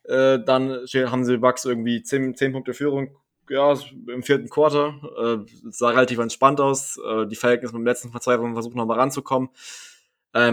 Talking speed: 165 wpm